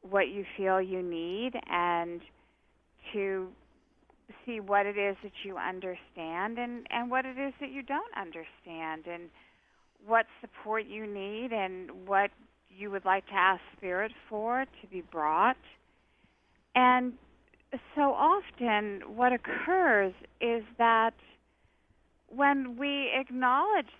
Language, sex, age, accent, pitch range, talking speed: English, female, 50-69, American, 195-255 Hz, 125 wpm